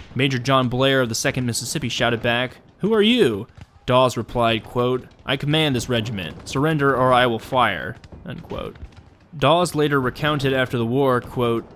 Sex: male